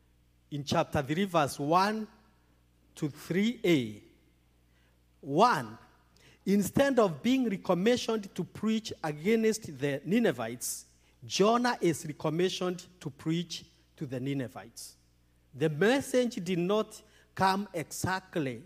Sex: male